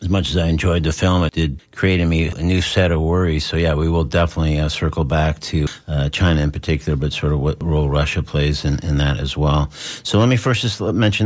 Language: English